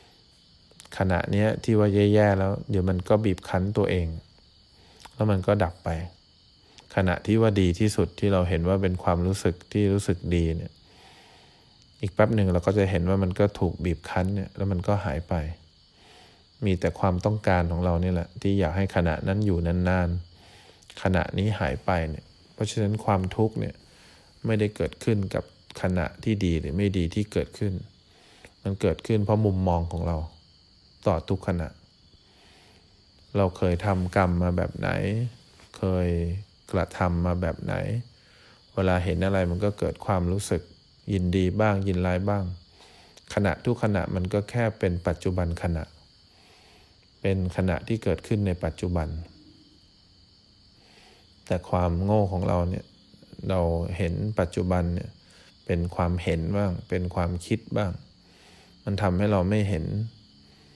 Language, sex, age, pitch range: English, male, 20-39, 90-100 Hz